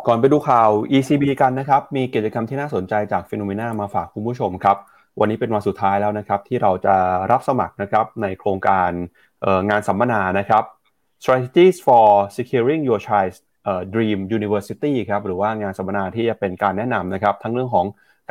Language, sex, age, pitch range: Thai, male, 20-39, 100-120 Hz